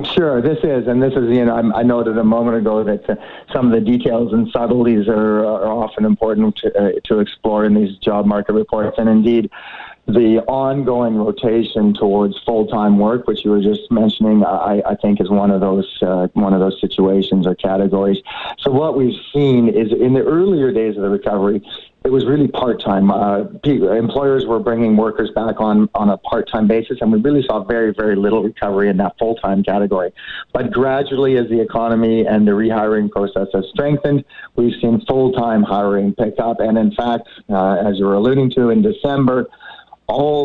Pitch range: 105-120 Hz